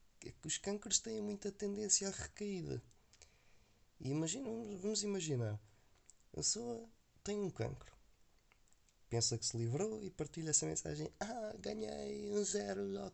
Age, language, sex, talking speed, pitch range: 20-39, Portuguese, male, 135 wpm, 115-165 Hz